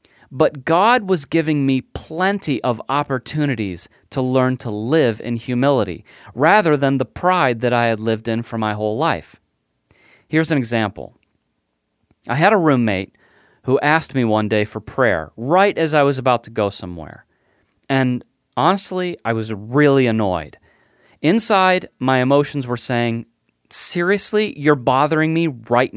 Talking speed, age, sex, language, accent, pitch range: 150 wpm, 30-49, male, English, American, 110-150 Hz